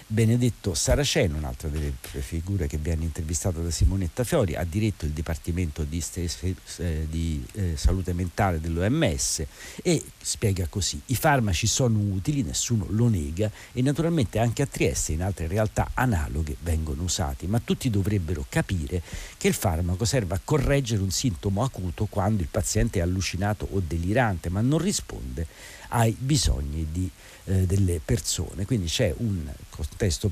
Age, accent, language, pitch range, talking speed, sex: 50-69, native, Italian, 85-110 Hz, 145 wpm, male